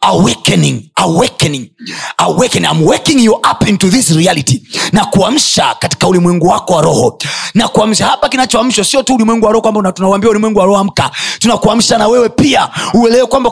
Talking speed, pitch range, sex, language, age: 175 wpm, 165-240 Hz, male, Swahili, 30-49